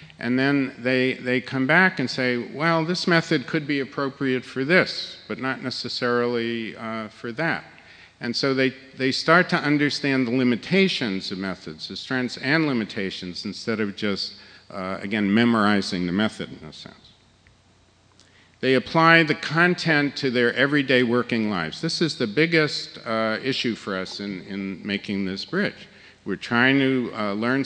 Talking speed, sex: 165 wpm, male